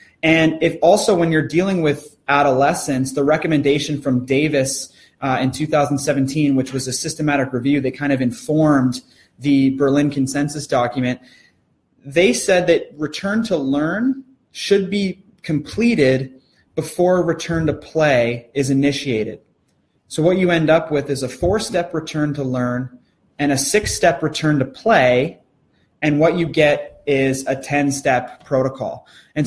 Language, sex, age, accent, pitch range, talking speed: English, male, 20-39, American, 135-160 Hz, 145 wpm